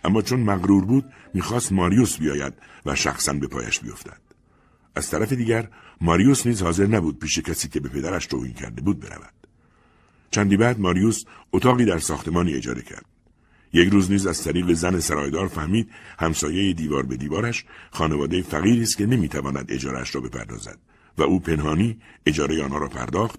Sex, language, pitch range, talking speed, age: male, Persian, 75-100 Hz, 160 wpm, 60-79